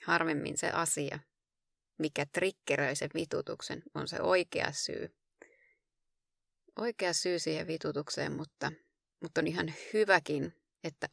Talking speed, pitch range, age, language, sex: 115 wpm, 150-200 Hz, 30-49, Finnish, female